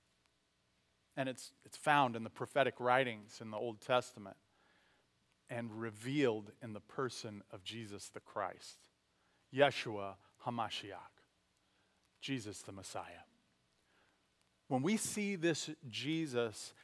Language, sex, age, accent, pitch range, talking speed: English, male, 40-59, American, 115-155 Hz, 110 wpm